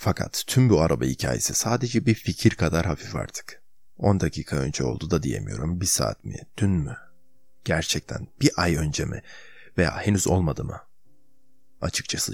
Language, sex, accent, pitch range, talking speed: Turkish, male, native, 80-105 Hz, 155 wpm